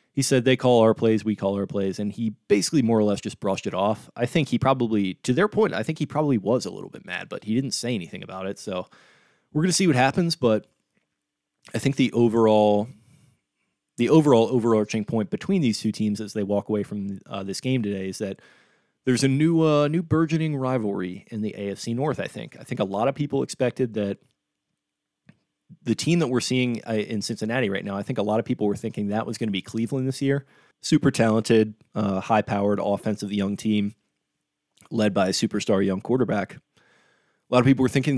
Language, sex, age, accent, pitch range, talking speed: English, male, 20-39, American, 105-130 Hz, 220 wpm